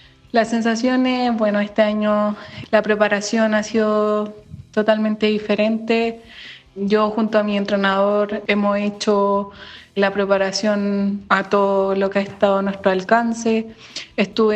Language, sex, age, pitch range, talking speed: Spanish, female, 20-39, 205-220 Hz, 125 wpm